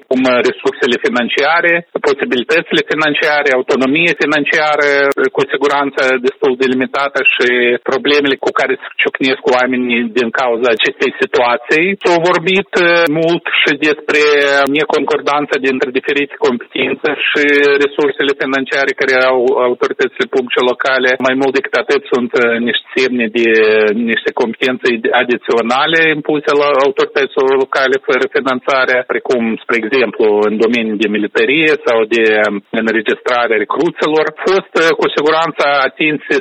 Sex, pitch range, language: male, 120-160 Hz, Romanian